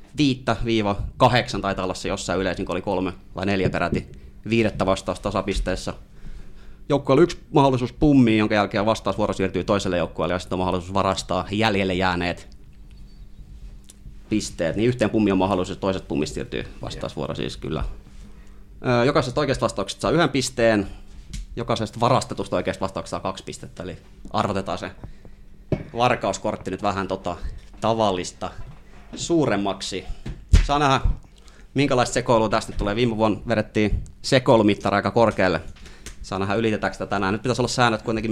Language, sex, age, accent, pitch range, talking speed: Finnish, male, 30-49, native, 95-115 Hz, 140 wpm